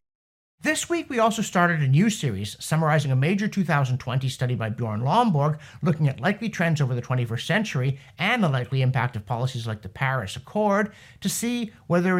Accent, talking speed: American, 180 wpm